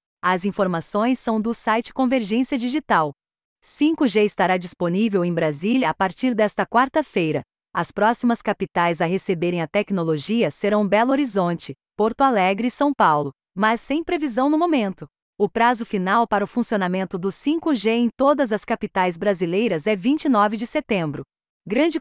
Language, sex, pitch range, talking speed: Portuguese, female, 195-260 Hz, 145 wpm